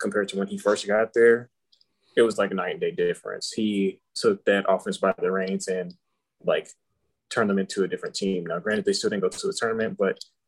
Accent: American